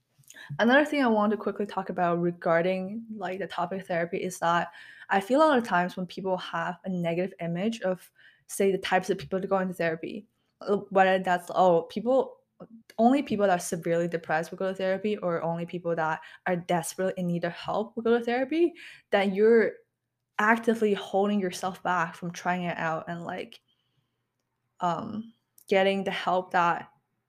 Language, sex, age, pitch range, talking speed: English, female, 20-39, 170-210 Hz, 180 wpm